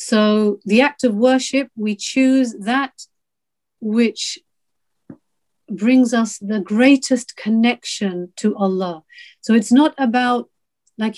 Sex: female